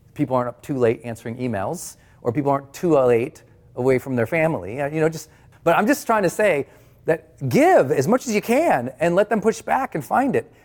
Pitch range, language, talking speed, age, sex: 120-170 Hz, English, 225 wpm, 30-49, male